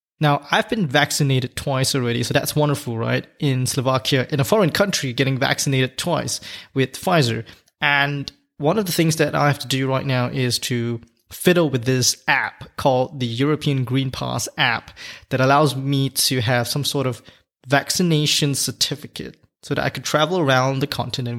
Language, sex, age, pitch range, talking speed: English, male, 20-39, 125-150 Hz, 175 wpm